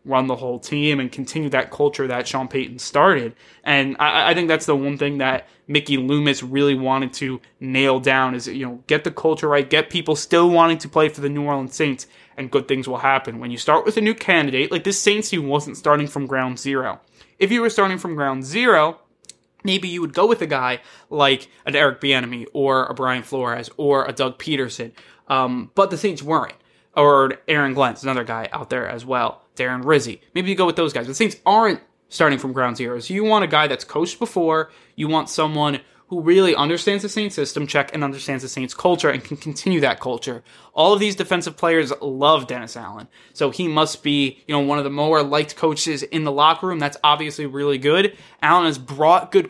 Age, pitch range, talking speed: 20-39, 130-170 Hz, 220 wpm